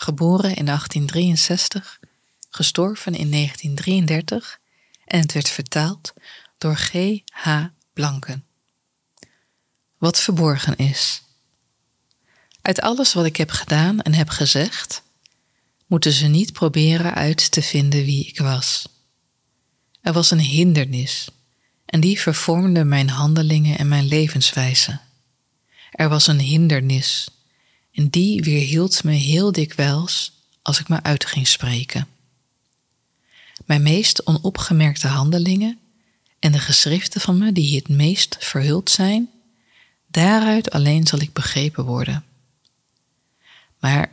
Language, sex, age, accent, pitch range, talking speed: Dutch, female, 20-39, Dutch, 140-170 Hz, 115 wpm